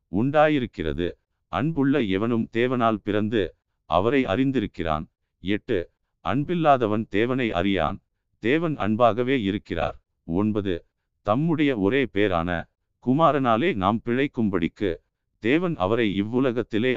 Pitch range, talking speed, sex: 95-125 Hz, 80 wpm, male